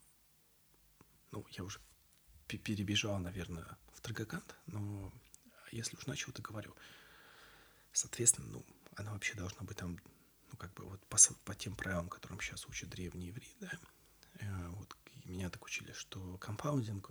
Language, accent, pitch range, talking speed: Russian, native, 95-120 Hz, 145 wpm